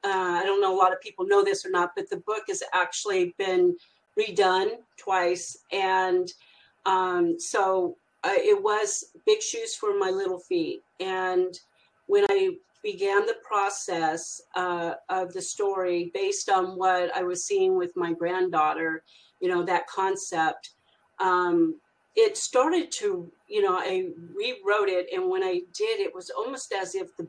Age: 40-59